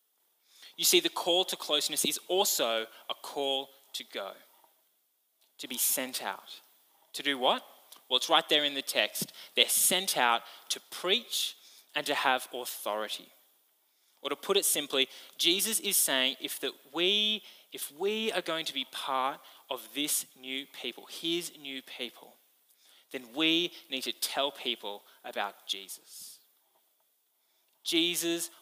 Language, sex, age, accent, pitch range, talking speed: English, male, 10-29, Australian, 130-180 Hz, 145 wpm